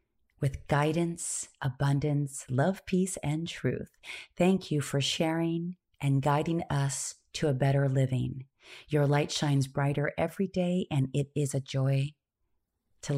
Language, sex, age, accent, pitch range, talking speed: English, female, 30-49, American, 135-170 Hz, 135 wpm